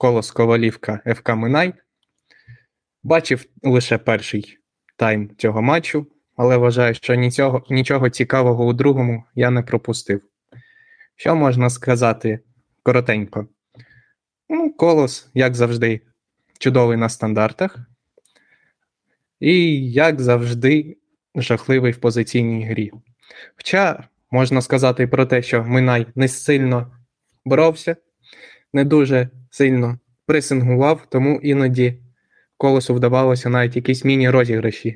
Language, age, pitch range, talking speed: Ukrainian, 20-39, 115-130 Hz, 105 wpm